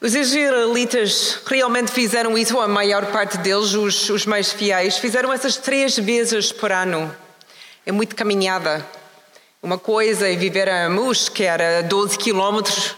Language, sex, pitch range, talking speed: Portuguese, female, 185-215 Hz, 150 wpm